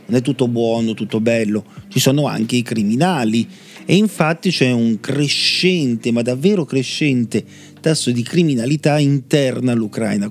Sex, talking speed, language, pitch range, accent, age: male, 140 wpm, Italian, 110-140 Hz, native, 40-59